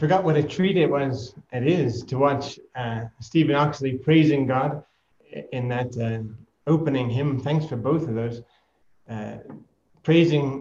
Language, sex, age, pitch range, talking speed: English, male, 30-49, 120-150 Hz, 155 wpm